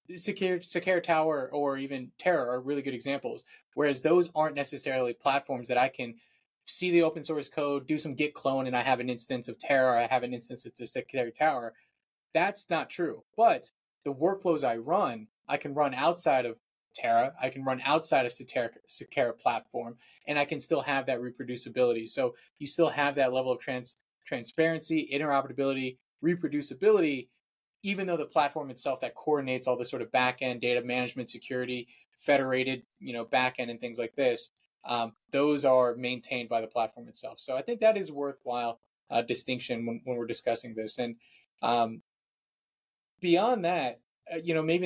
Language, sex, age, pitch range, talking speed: English, male, 20-39, 125-155 Hz, 180 wpm